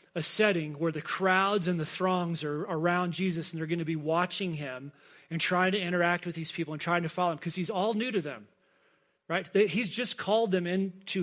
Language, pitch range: English, 160-195 Hz